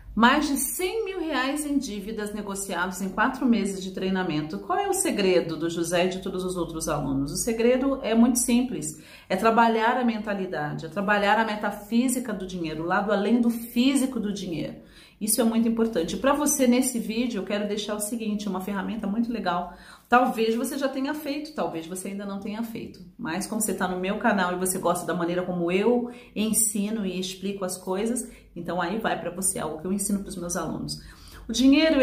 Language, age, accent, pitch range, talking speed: Portuguese, 40-59, Brazilian, 180-240 Hz, 205 wpm